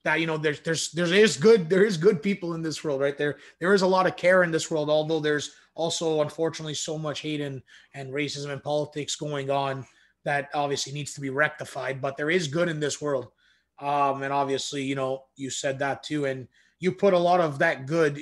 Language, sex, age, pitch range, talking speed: English, male, 30-49, 140-165 Hz, 230 wpm